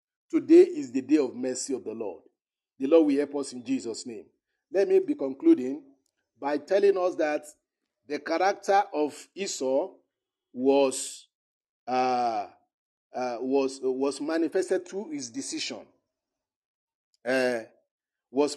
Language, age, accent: English, 50-69, Nigerian